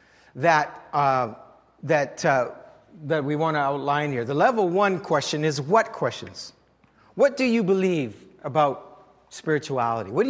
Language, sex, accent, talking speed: English, male, American, 145 wpm